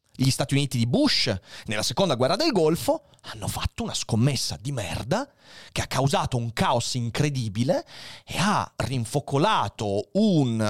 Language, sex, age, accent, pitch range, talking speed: Italian, male, 30-49, native, 110-155 Hz, 145 wpm